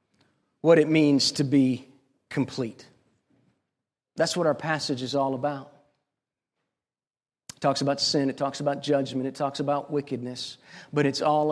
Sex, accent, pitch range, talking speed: male, American, 130-145 Hz, 145 wpm